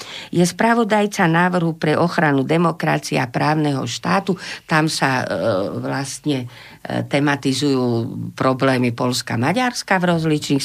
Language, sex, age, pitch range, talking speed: Slovak, female, 50-69, 125-175 Hz, 105 wpm